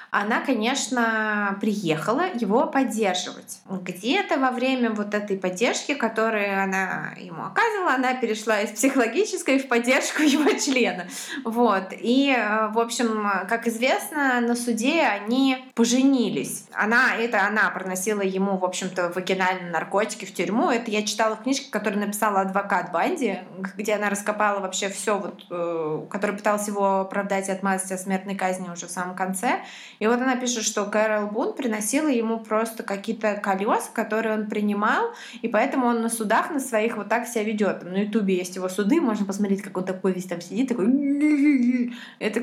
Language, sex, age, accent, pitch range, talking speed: Russian, female, 20-39, native, 195-250 Hz, 160 wpm